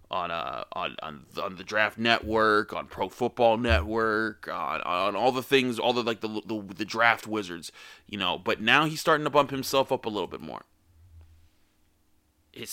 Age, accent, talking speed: 20-39, American, 190 wpm